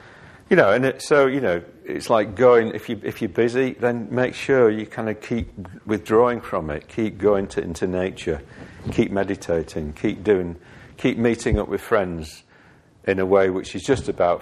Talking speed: 190 wpm